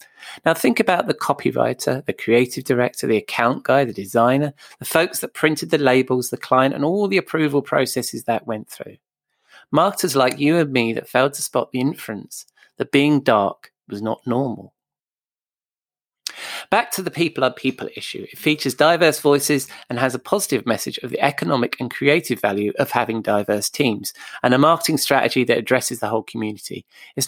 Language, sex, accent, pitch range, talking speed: English, male, British, 120-150 Hz, 180 wpm